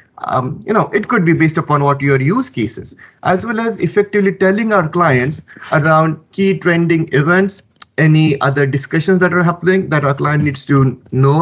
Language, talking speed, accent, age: English, 190 wpm, Indian, 20-39